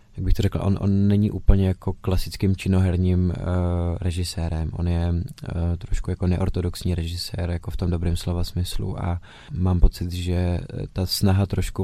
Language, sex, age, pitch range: Czech, male, 20-39, 90-95 Hz